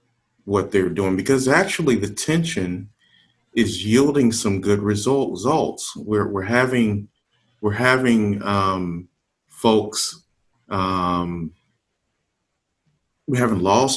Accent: American